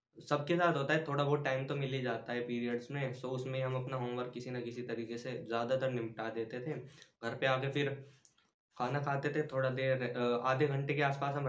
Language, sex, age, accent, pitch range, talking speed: Hindi, male, 10-29, native, 125-145 Hz, 225 wpm